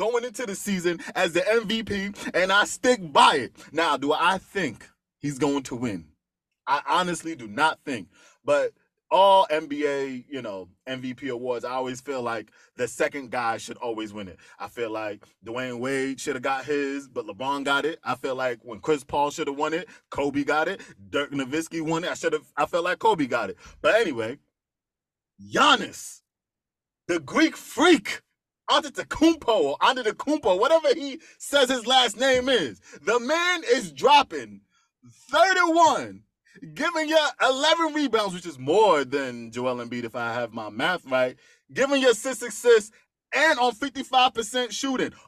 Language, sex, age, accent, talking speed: English, male, 20-39, American, 170 wpm